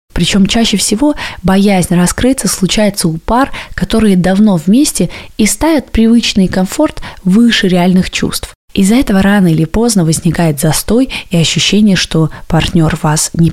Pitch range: 170-210 Hz